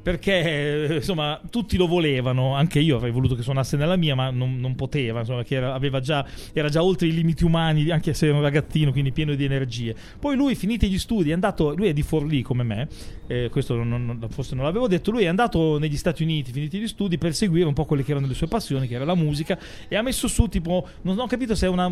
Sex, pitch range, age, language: male, 140-185 Hz, 30-49, Italian